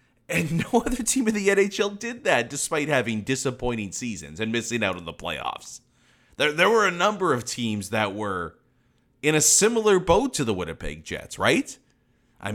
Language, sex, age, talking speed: English, male, 30-49, 180 wpm